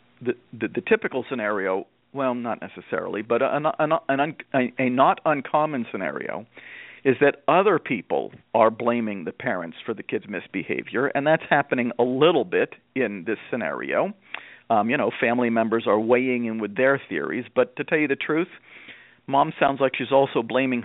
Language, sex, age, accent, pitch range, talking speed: English, male, 50-69, American, 120-140 Hz, 165 wpm